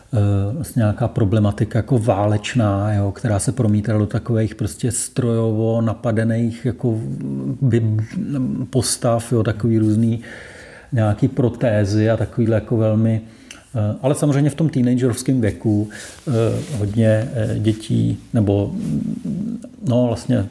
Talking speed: 95 wpm